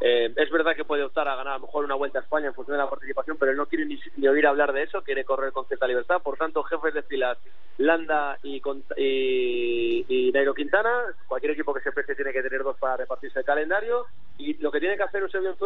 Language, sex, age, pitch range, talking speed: Spanish, male, 30-49, 145-195 Hz, 260 wpm